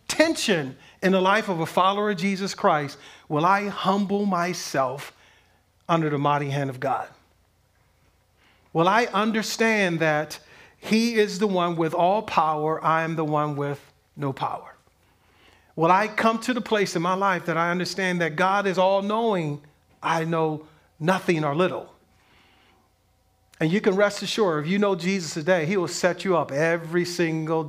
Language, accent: English, American